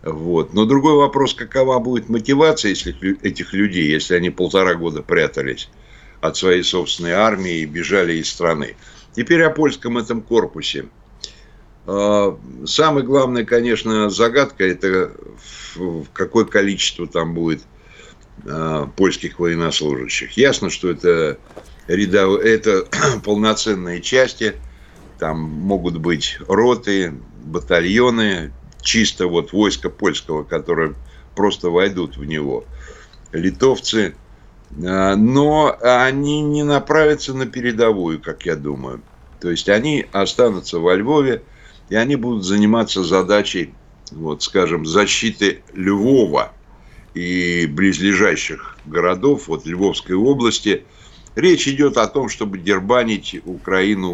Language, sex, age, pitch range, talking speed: Russian, male, 60-79, 85-125 Hz, 110 wpm